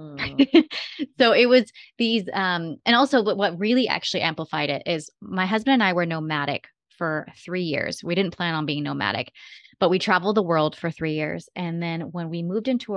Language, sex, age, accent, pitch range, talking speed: English, female, 20-39, American, 160-205 Hz, 195 wpm